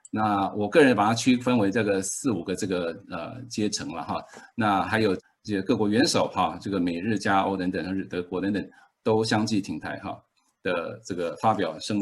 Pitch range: 105-140 Hz